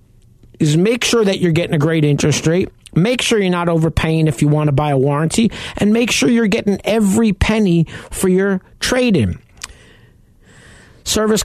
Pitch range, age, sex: 125-170 Hz, 50-69, male